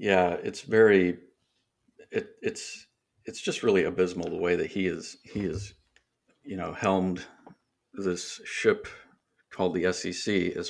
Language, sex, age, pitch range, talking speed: English, male, 50-69, 90-115 Hz, 140 wpm